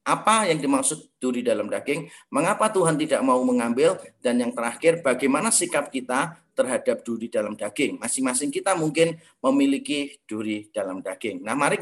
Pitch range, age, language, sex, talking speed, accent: 130-195 Hz, 30-49, English, male, 150 wpm, Indonesian